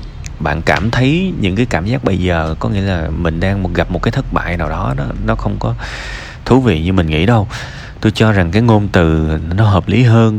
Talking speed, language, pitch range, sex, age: 230 wpm, Vietnamese, 85-120 Hz, male, 20-39